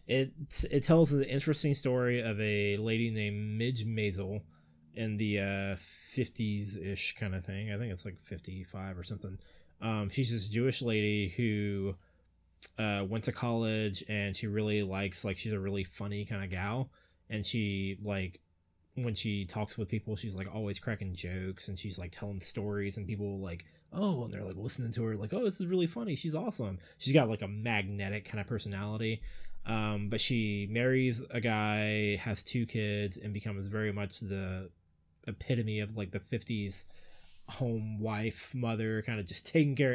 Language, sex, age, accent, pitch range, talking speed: English, male, 20-39, American, 100-115 Hz, 180 wpm